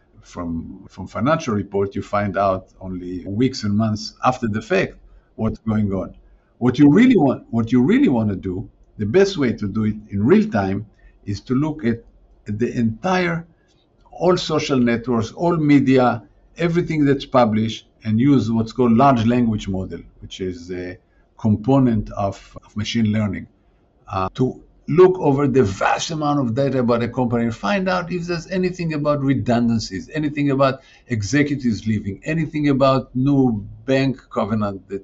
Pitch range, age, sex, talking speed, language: 105-135 Hz, 50-69, male, 165 wpm, English